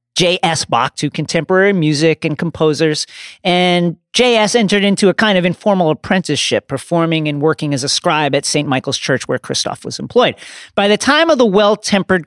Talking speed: 175 wpm